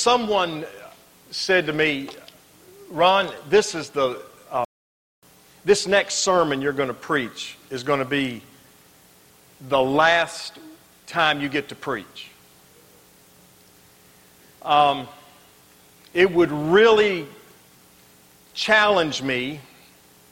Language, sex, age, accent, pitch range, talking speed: English, male, 50-69, American, 130-170 Hz, 95 wpm